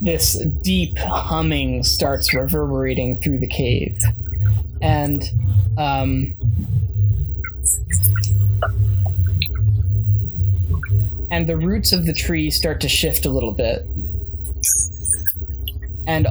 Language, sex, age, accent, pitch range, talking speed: English, male, 10-29, American, 85-105 Hz, 85 wpm